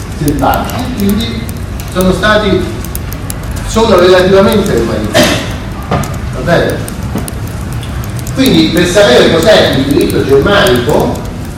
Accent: native